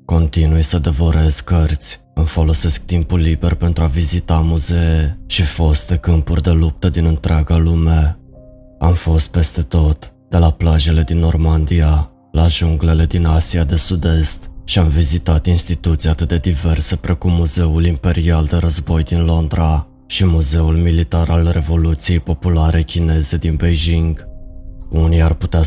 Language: Romanian